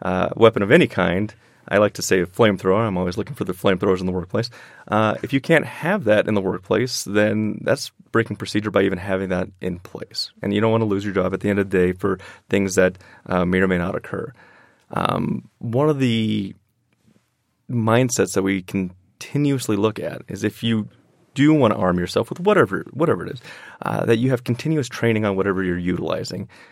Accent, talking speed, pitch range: American, 215 wpm, 95-120 Hz